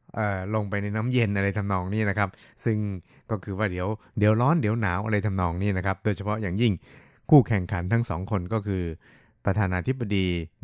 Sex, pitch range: male, 95-110 Hz